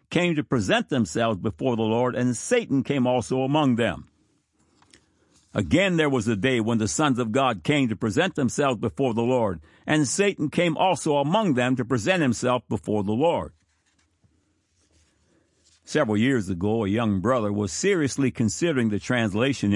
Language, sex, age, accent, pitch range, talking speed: English, male, 60-79, American, 105-145 Hz, 160 wpm